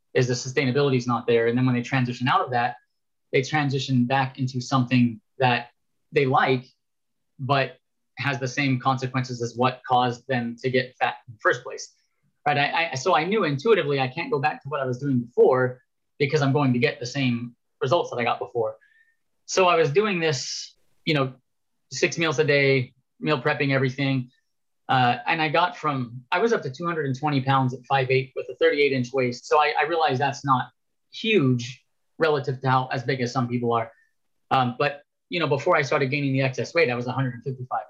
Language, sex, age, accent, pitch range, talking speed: English, male, 30-49, American, 125-150 Hz, 205 wpm